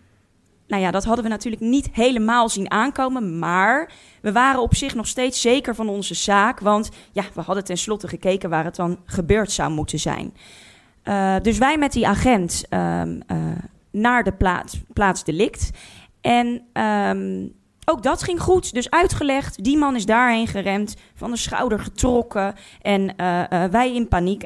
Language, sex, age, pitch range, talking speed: Dutch, female, 20-39, 175-235 Hz, 170 wpm